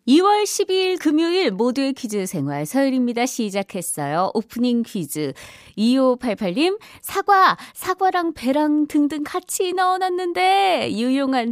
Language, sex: Korean, female